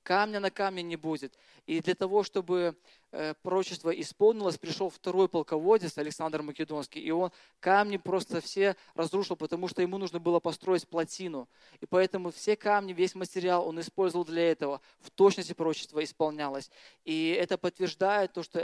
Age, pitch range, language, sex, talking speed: 20-39, 155-185 Hz, Russian, male, 155 wpm